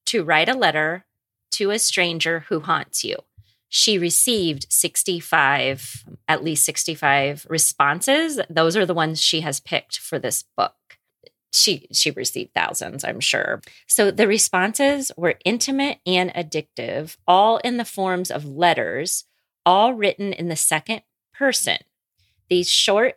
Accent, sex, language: American, female, English